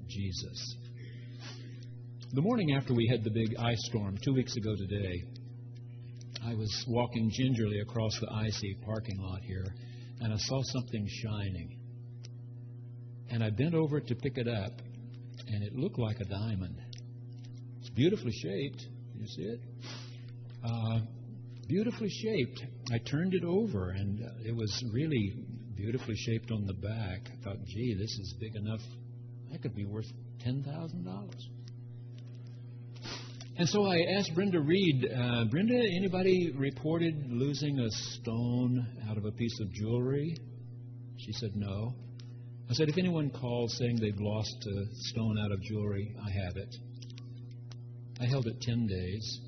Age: 60-79